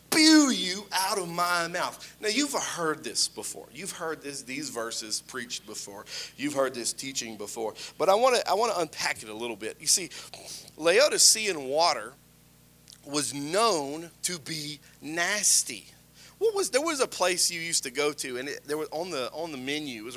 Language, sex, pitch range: English, male, 140-200 Hz